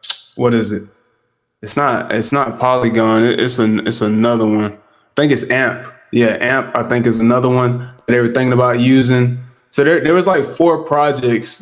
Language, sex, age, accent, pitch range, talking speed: English, male, 20-39, American, 115-130 Hz, 190 wpm